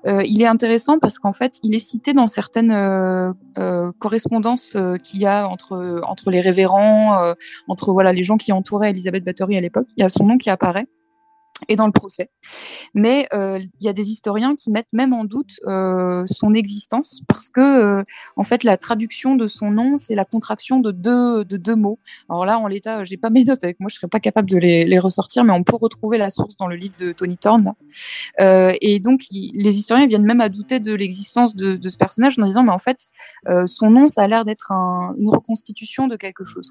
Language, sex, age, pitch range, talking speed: French, female, 20-39, 190-230 Hz, 235 wpm